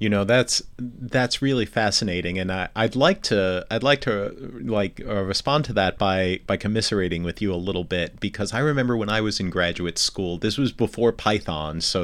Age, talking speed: 30-49, 200 wpm